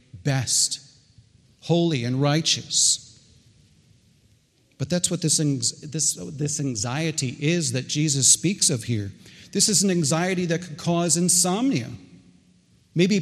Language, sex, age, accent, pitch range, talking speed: English, male, 40-59, American, 130-165 Hz, 120 wpm